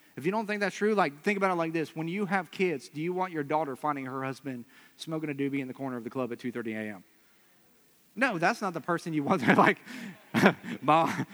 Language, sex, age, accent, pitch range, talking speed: English, male, 40-59, American, 135-165 Hz, 245 wpm